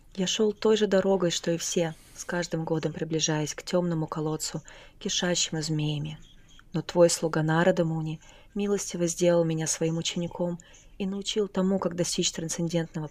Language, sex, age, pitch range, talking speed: English, female, 20-39, 160-180 Hz, 145 wpm